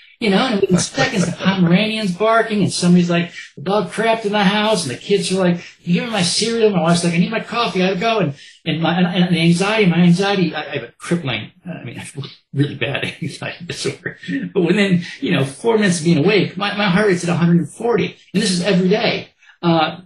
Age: 50-69